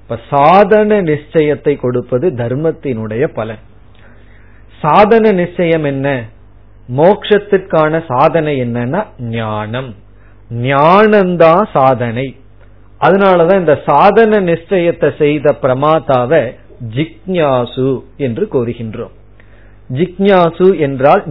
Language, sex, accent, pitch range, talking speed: Tamil, male, native, 115-190 Hz, 70 wpm